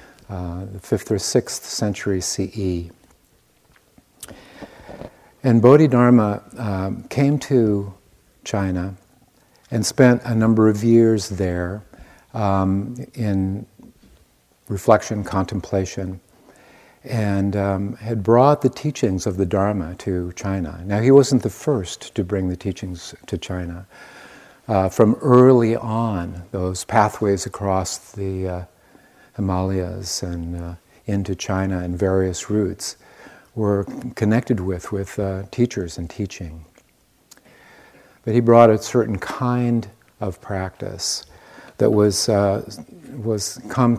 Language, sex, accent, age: English, male, American, 50-69